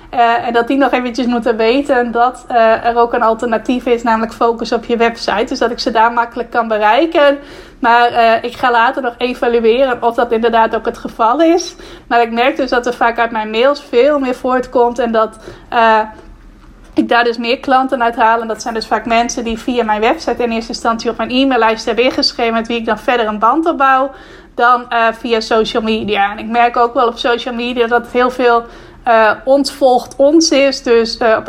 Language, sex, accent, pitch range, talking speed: Dutch, female, Dutch, 230-260 Hz, 220 wpm